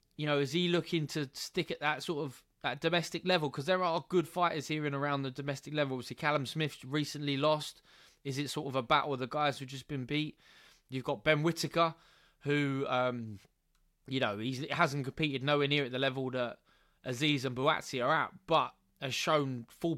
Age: 20-39